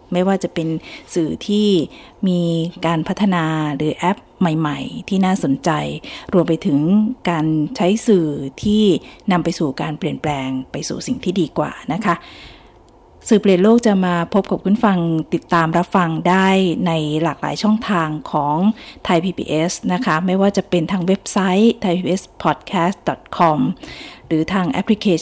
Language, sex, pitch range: Thai, female, 165-195 Hz